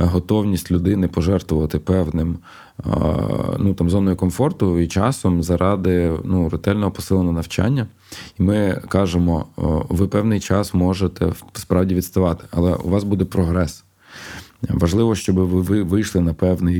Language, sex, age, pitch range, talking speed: Ukrainian, male, 20-39, 90-105 Hz, 130 wpm